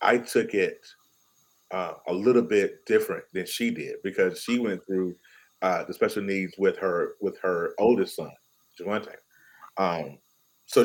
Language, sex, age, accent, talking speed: English, male, 30-49, American, 155 wpm